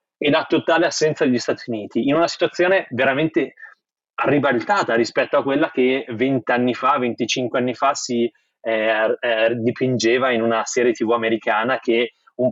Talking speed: 155 wpm